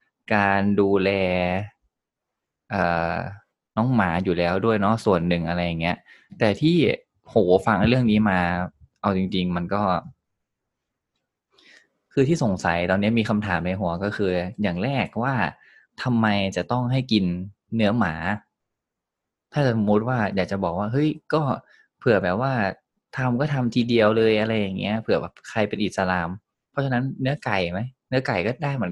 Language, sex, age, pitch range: Thai, male, 20-39, 90-115 Hz